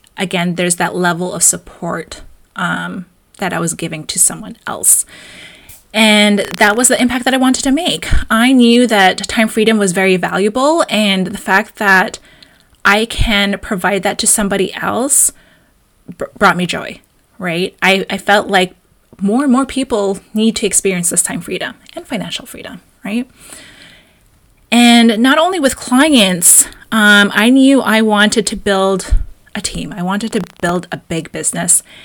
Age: 20-39